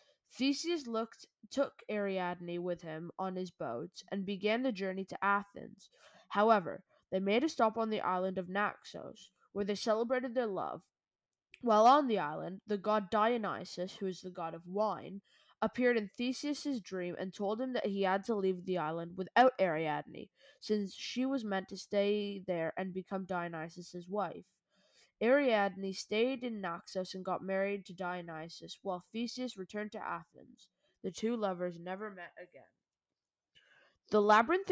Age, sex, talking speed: 20-39, female, 160 wpm